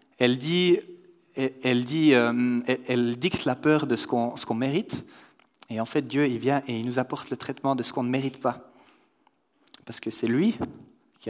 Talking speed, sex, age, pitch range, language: 195 wpm, male, 30-49, 120-150 Hz, French